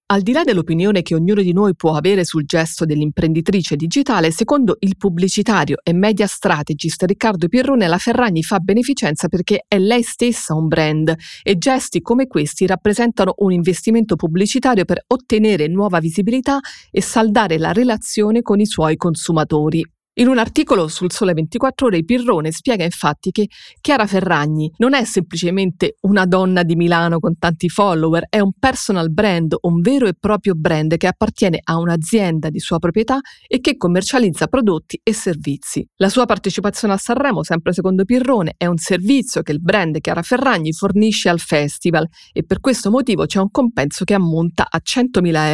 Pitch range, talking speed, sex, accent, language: 170-220 Hz, 165 wpm, female, native, Italian